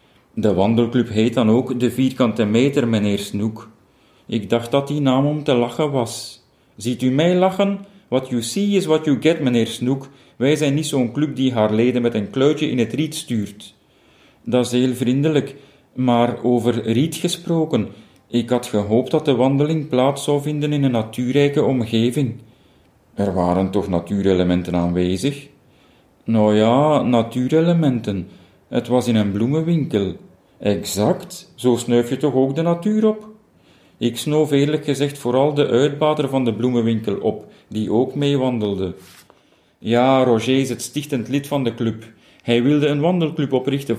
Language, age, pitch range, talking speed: Dutch, 40-59, 115-140 Hz, 160 wpm